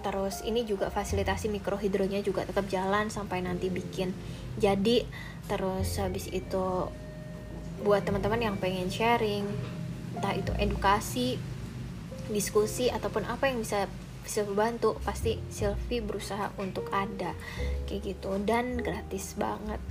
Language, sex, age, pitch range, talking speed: Indonesian, female, 20-39, 155-210 Hz, 120 wpm